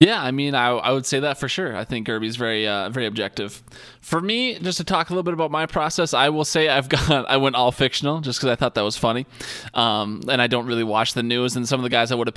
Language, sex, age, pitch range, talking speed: English, male, 20-39, 115-140 Hz, 290 wpm